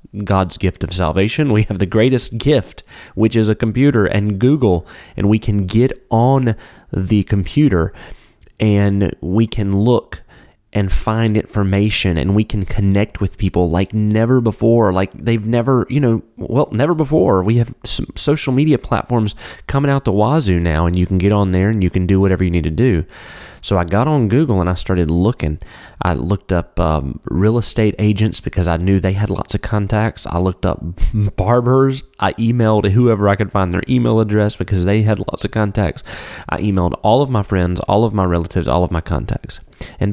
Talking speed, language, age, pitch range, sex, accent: 195 wpm, English, 30-49, 95-115 Hz, male, American